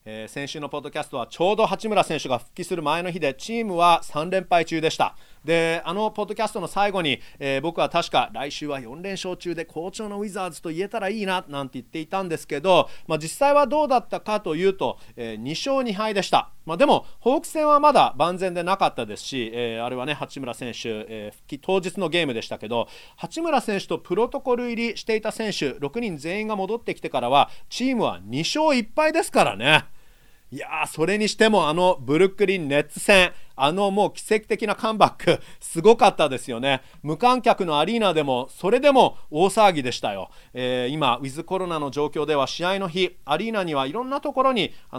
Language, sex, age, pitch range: Japanese, male, 40-59, 140-210 Hz